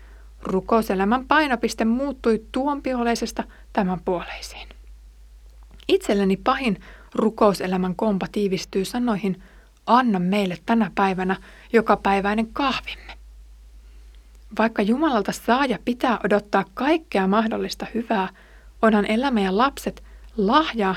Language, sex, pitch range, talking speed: Finnish, female, 185-230 Hz, 85 wpm